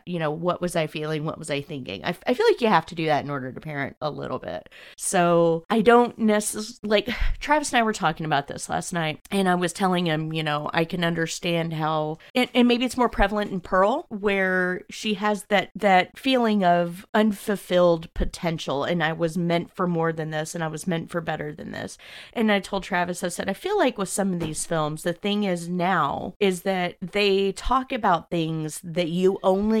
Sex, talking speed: female, 225 wpm